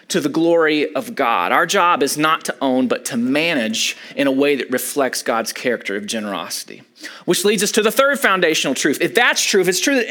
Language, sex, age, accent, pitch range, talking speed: English, male, 30-49, American, 145-235 Hz, 225 wpm